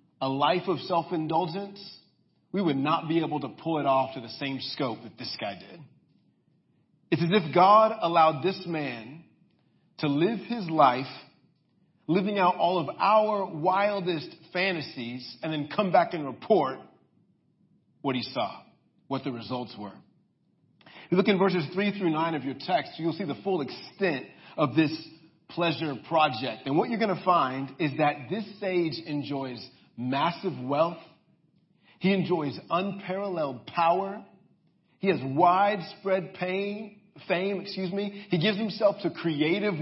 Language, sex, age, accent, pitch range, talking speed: English, male, 40-59, American, 155-200 Hz, 150 wpm